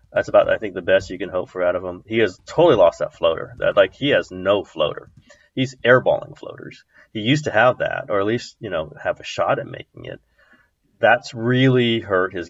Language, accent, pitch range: English, American, 90-140 Hz